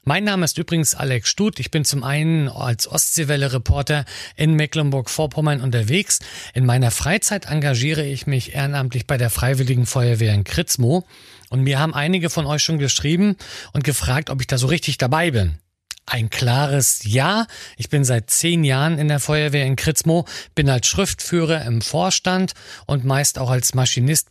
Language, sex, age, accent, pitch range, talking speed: German, male, 40-59, German, 125-155 Hz, 170 wpm